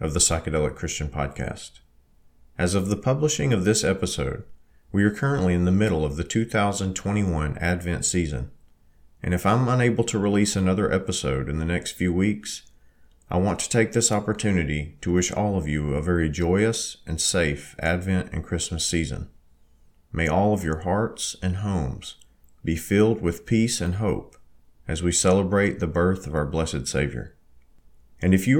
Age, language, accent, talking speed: 40-59, English, American, 170 wpm